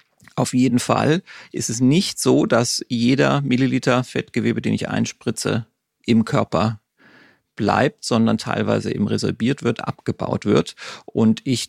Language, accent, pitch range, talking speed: German, German, 110-130 Hz, 135 wpm